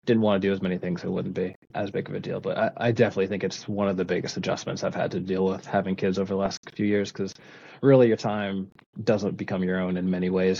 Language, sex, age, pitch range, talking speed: English, male, 20-39, 95-115 Hz, 285 wpm